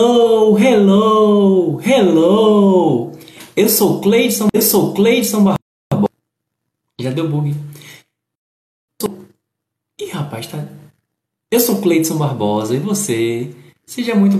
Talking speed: 105 wpm